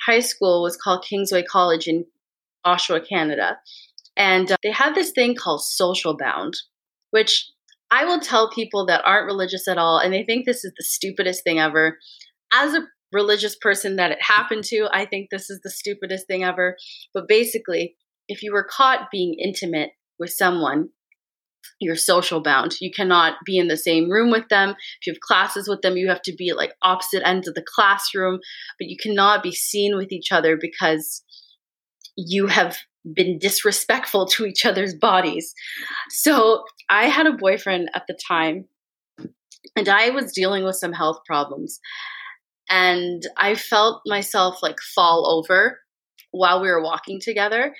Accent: American